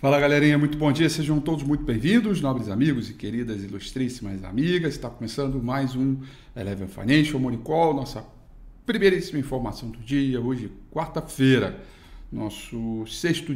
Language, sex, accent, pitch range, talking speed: Portuguese, male, Brazilian, 120-145 Hz, 135 wpm